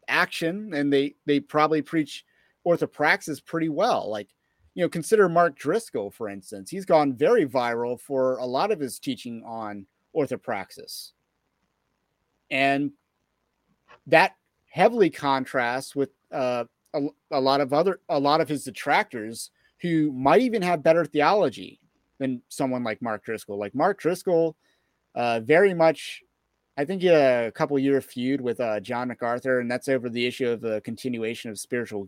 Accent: American